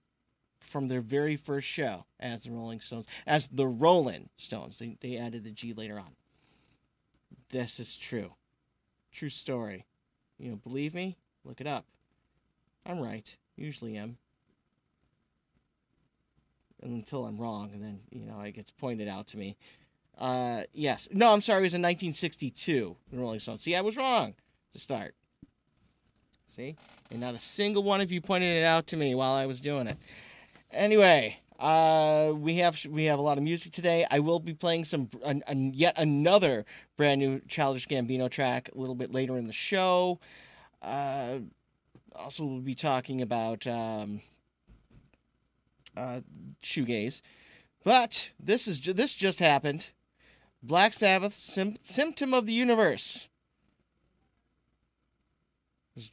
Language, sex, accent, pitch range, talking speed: English, male, American, 120-165 Hz, 150 wpm